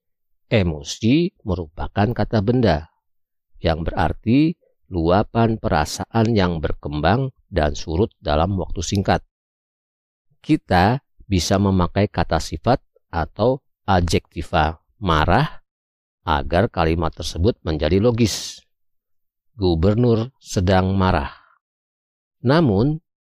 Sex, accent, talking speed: male, native, 80 wpm